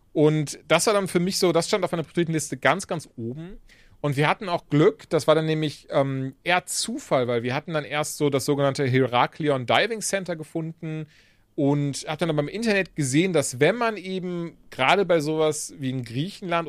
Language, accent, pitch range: German, German, 135-175 Hz